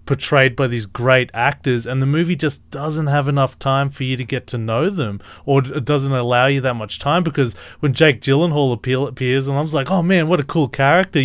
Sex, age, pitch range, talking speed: male, 30-49, 125-150 Hz, 235 wpm